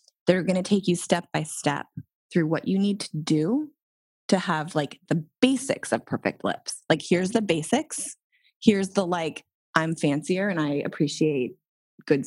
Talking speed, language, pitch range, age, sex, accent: 170 wpm, English, 150-200 Hz, 20-39, female, American